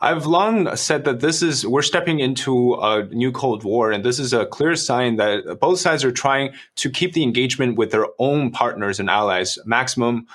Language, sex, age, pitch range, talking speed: English, male, 20-39, 105-130 Hz, 205 wpm